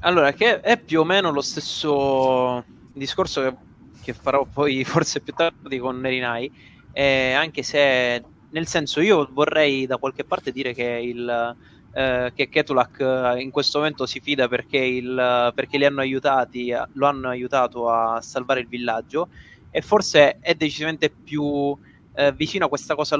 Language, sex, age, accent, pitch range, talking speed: Italian, male, 20-39, native, 125-160 Hz, 160 wpm